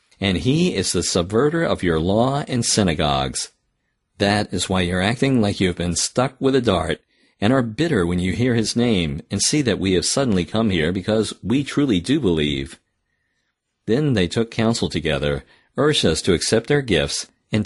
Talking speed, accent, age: 195 wpm, American, 50-69